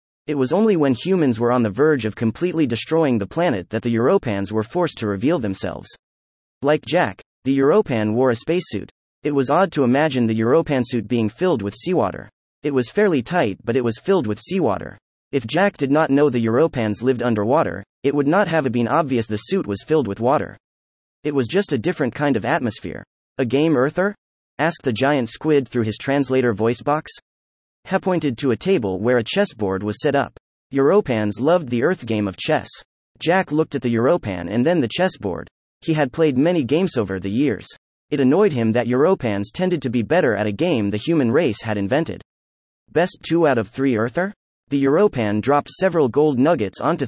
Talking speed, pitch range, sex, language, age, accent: 200 wpm, 110-160 Hz, male, English, 30-49, American